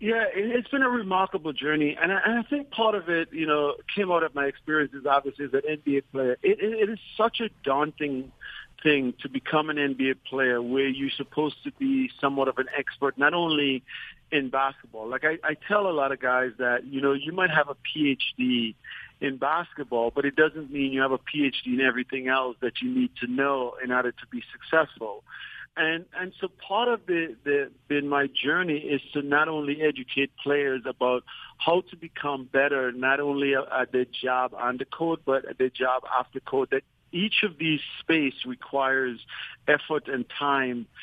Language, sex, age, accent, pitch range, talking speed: English, male, 50-69, American, 130-160 Hz, 195 wpm